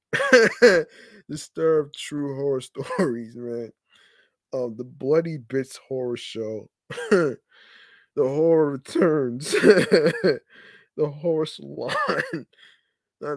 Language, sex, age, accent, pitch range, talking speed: English, male, 20-39, American, 115-165 Hz, 80 wpm